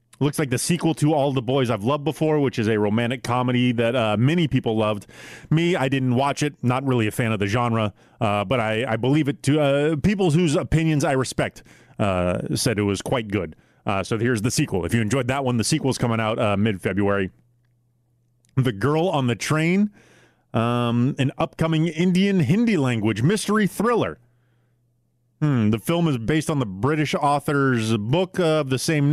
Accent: American